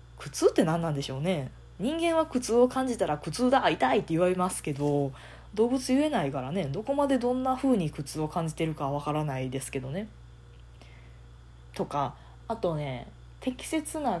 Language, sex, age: Japanese, female, 20-39